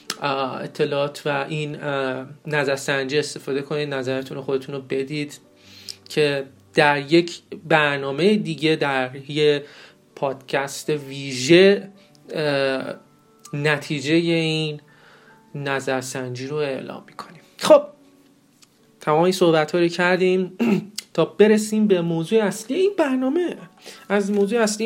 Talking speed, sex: 100 wpm, male